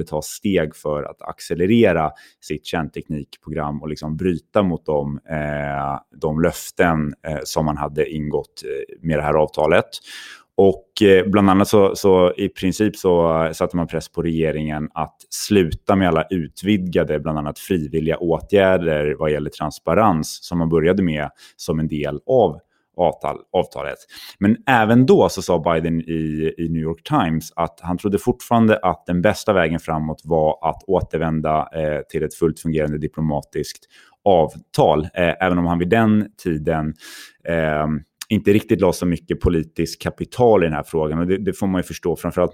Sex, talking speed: male, 150 wpm